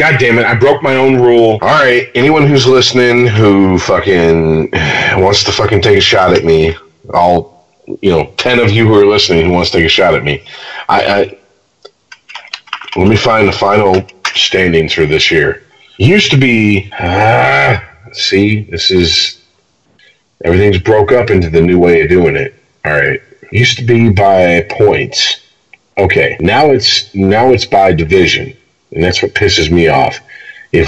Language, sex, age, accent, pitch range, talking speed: English, male, 40-59, American, 85-130 Hz, 175 wpm